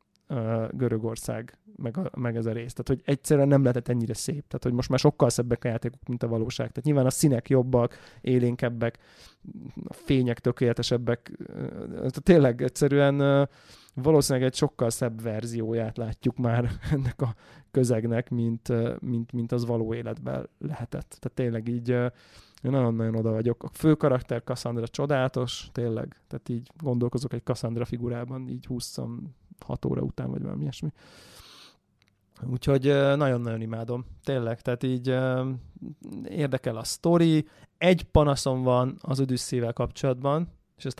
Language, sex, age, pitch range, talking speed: Hungarian, male, 20-39, 115-135 Hz, 140 wpm